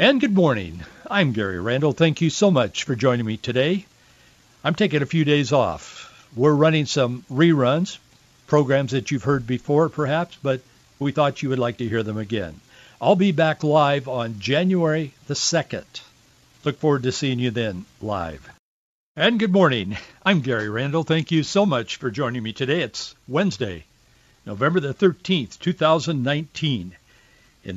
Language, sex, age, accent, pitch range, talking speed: English, male, 60-79, American, 120-165 Hz, 165 wpm